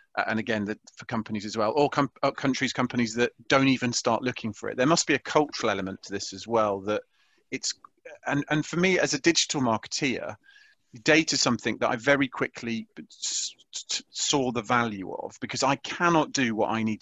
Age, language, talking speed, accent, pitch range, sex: 40-59, English, 200 wpm, British, 110-130 Hz, male